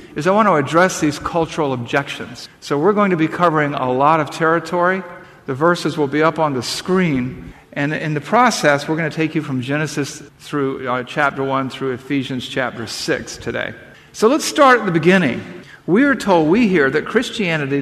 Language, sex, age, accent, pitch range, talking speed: English, male, 50-69, American, 135-190 Hz, 200 wpm